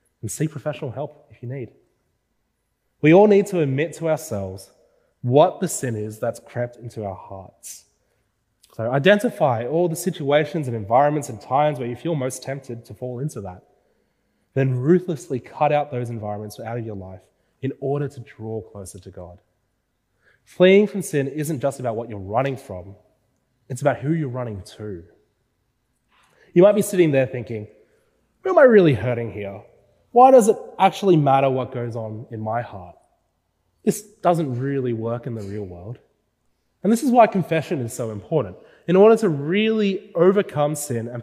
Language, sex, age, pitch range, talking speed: English, male, 20-39, 110-155 Hz, 175 wpm